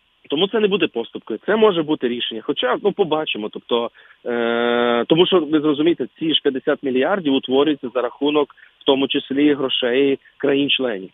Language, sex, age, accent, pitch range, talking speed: Ukrainian, male, 30-49, native, 120-150 Hz, 160 wpm